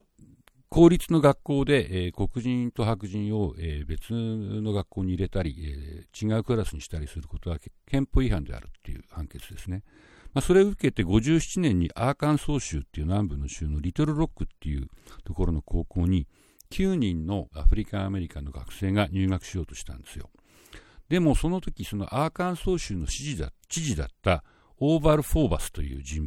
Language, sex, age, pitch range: Japanese, male, 60-79, 85-125 Hz